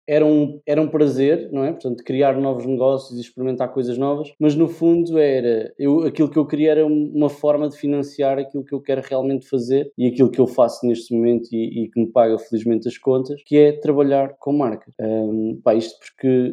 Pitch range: 115-140 Hz